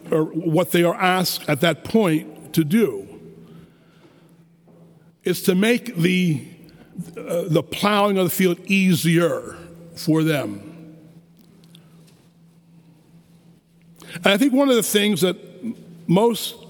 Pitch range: 165-190 Hz